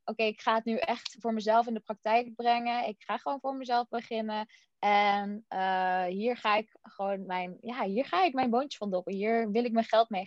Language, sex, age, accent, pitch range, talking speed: Dutch, female, 20-39, Dutch, 205-260 Hz, 235 wpm